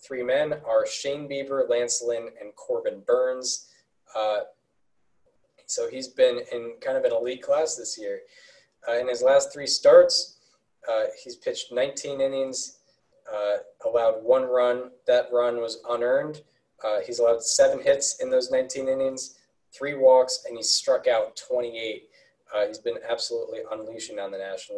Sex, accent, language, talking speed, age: male, American, English, 155 wpm, 20-39